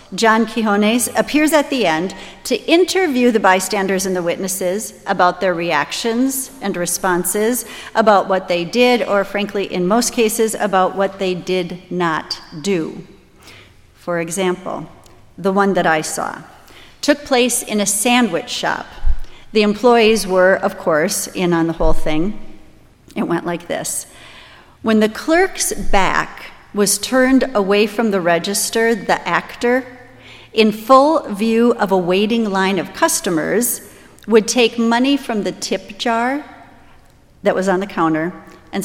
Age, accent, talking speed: 40-59, American, 145 wpm